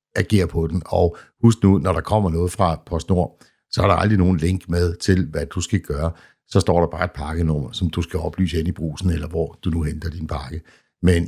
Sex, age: male, 60-79